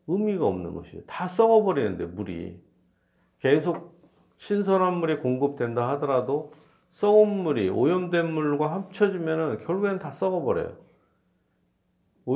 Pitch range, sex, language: 105-155 Hz, male, Korean